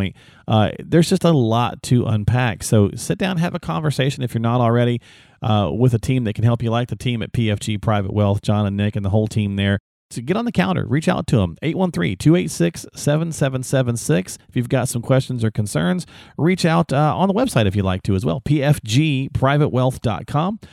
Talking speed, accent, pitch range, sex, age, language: 205 wpm, American, 110-145 Hz, male, 40-59, English